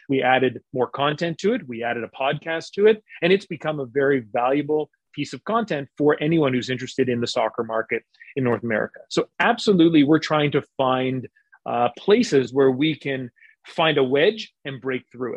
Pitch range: 125-155 Hz